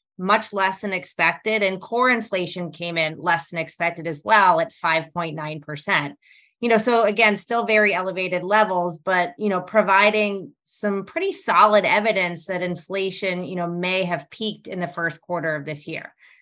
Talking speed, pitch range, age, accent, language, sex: 180 wpm, 165-200 Hz, 20-39, American, English, female